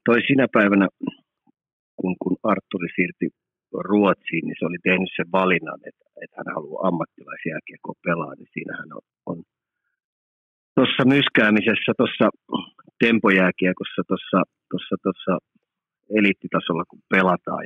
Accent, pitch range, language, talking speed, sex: native, 90-105 Hz, Finnish, 110 wpm, male